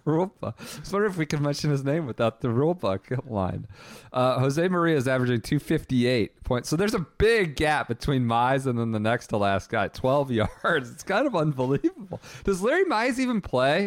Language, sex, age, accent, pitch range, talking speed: English, male, 40-59, American, 105-160 Hz, 200 wpm